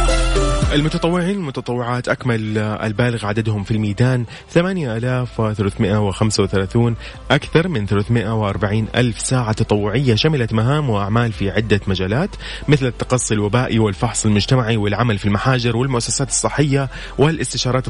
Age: 30-49